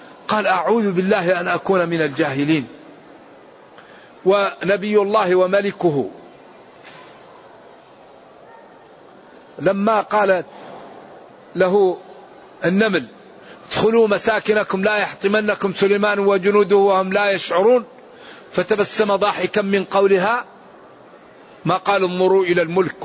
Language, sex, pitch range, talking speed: Arabic, male, 160-195 Hz, 85 wpm